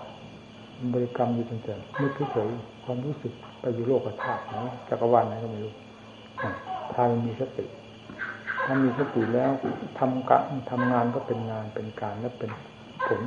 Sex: male